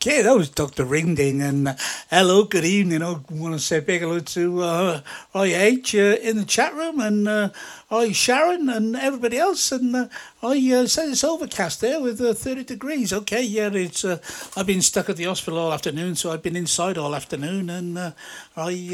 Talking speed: 200 wpm